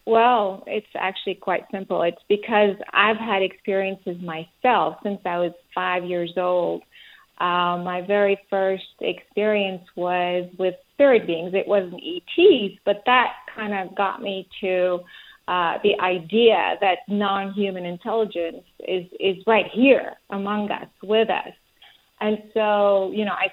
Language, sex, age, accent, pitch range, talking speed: English, female, 30-49, American, 185-220 Hz, 140 wpm